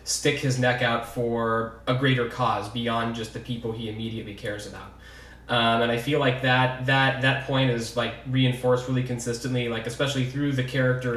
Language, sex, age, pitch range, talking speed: English, male, 20-39, 115-125 Hz, 190 wpm